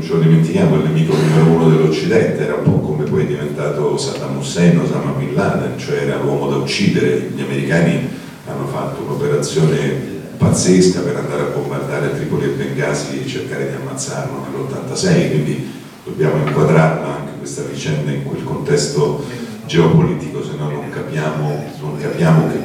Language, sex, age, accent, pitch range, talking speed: Italian, male, 50-69, native, 70-80 Hz, 160 wpm